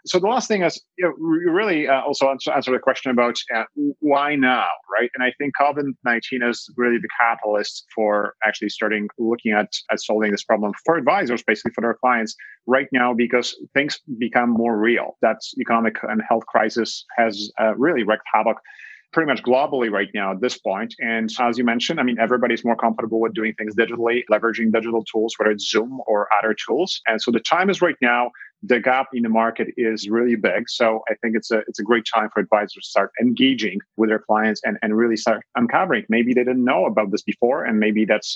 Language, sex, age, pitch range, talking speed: English, male, 30-49, 110-140 Hz, 215 wpm